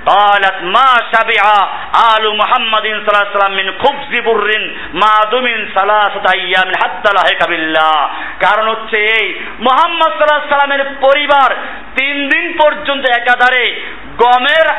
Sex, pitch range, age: male, 220-260 Hz, 50-69